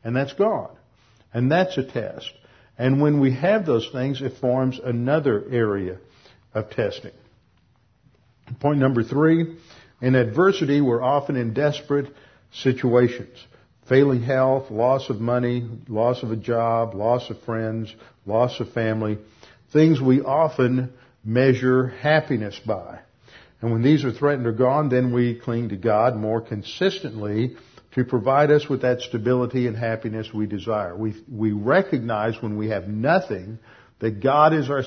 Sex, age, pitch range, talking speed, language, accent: male, 50-69, 110-130 Hz, 145 wpm, English, American